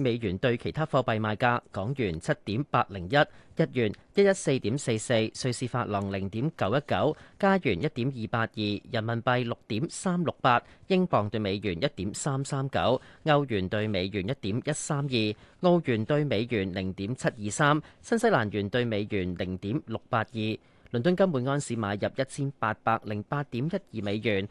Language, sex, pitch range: Chinese, male, 110-150 Hz